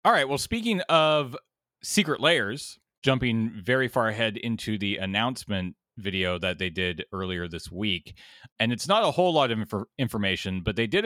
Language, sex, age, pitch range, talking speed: English, male, 30-49, 100-130 Hz, 175 wpm